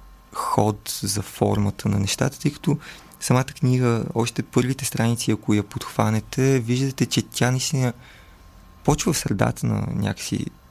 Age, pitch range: 30-49, 105-130 Hz